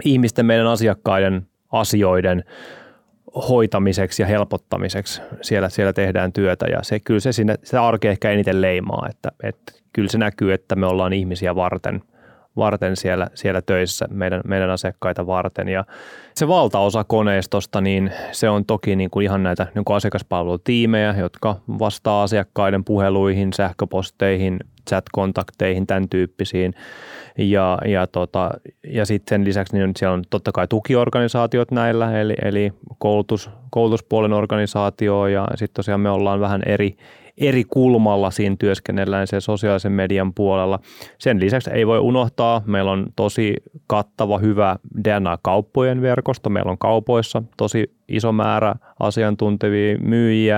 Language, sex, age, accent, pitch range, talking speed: Finnish, male, 20-39, native, 95-115 Hz, 125 wpm